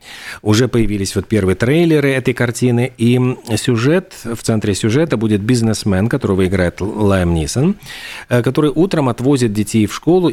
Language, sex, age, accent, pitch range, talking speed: Russian, male, 40-59, native, 95-125 Hz, 140 wpm